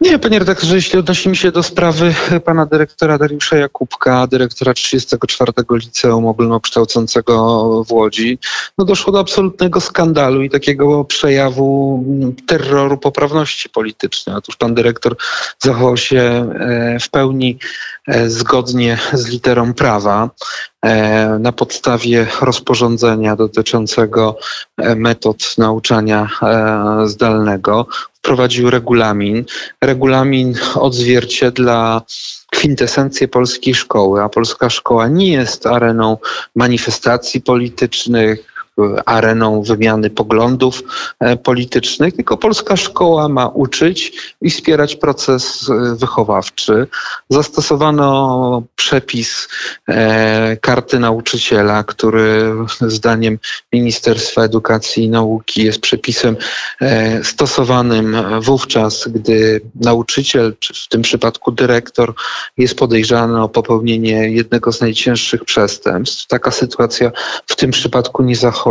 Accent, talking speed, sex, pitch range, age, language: native, 100 wpm, male, 115-135 Hz, 40-59, Polish